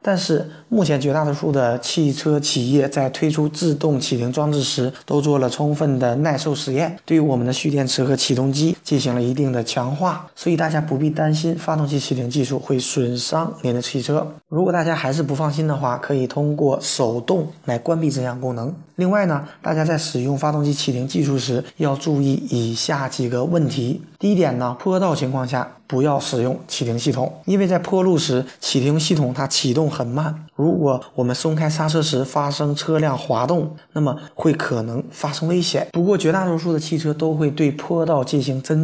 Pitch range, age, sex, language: 130-160 Hz, 20-39, male, Chinese